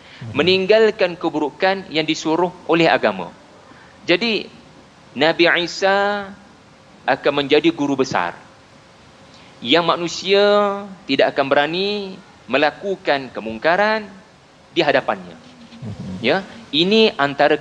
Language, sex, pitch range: Malayalam, male, 130-180 Hz